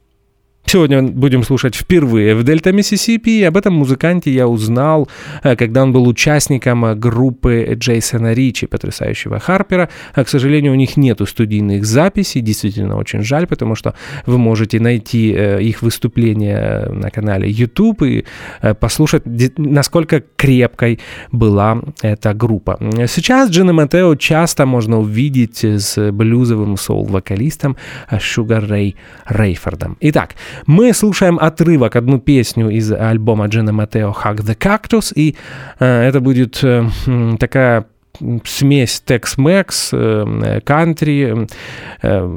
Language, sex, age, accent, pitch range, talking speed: Russian, male, 20-39, native, 110-145 Hz, 110 wpm